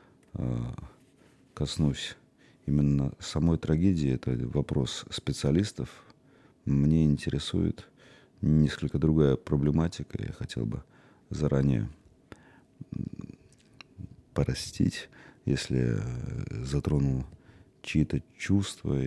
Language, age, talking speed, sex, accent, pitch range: Russian, 40-59, 65 wpm, male, native, 70-90 Hz